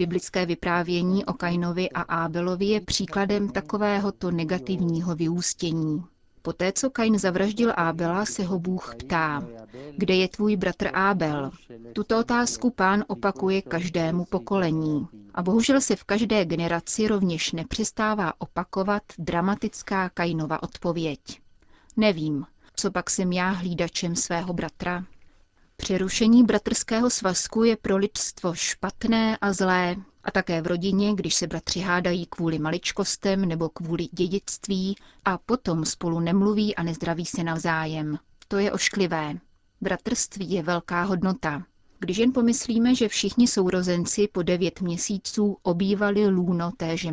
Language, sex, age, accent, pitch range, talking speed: Czech, female, 30-49, native, 170-205 Hz, 125 wpm